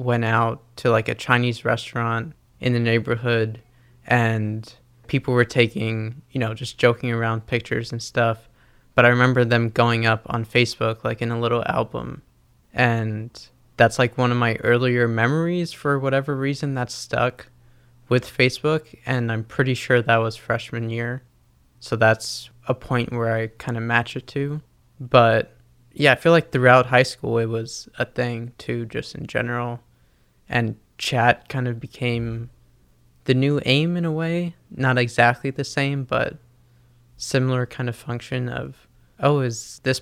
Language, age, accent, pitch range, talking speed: English, 20-39, American, 115-125 Hz, 165 wpm